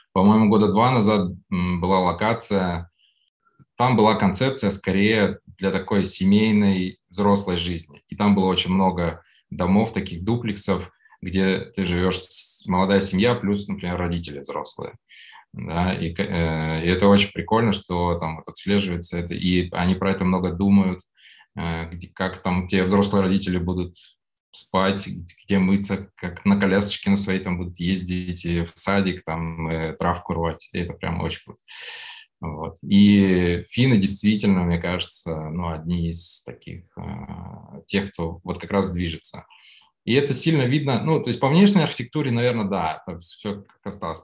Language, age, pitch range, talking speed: Russian, 20-39, 85-100 Hz, 150 wpm